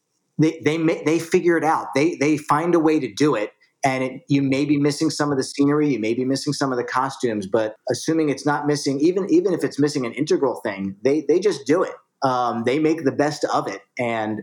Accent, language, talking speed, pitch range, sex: American, English, 245 wpm, 125-155 Hz, male